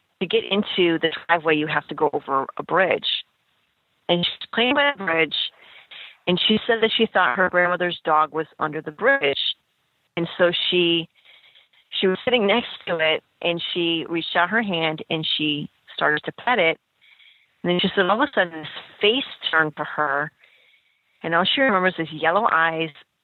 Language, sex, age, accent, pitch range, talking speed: English, female, 30-49, American, 160-185 Hz, 185 wpm